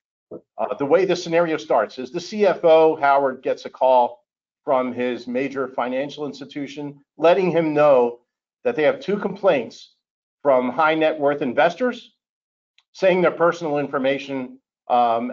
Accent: American